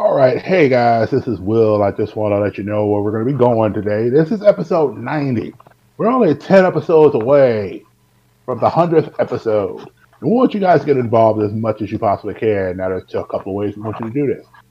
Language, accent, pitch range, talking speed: English, American, 110-145 Hz, 240 wpm